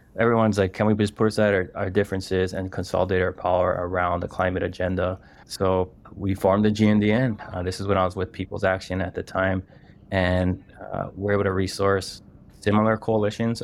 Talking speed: 185 wpm